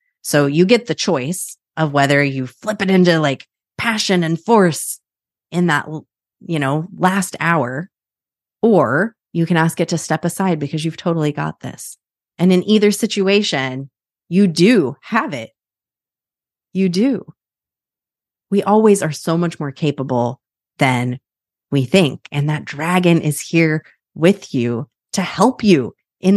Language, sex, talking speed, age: English, female, 150 wpm, 30-49